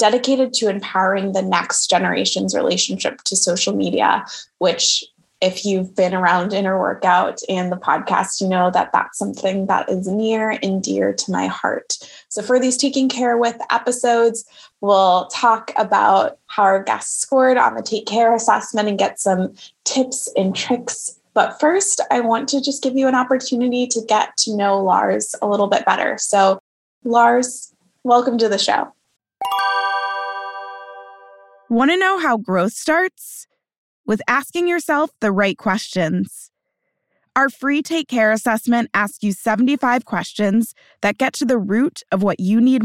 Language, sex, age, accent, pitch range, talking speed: English, female, 20-39, American, 195-250 Hz, 160 wpm